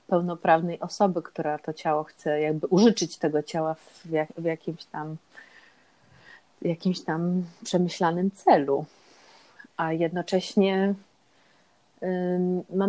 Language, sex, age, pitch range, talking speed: Polish, female, 30-49, 180-210 Hz, 100 wpm